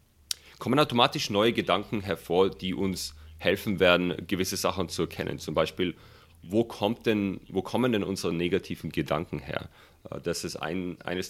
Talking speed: 155 wpm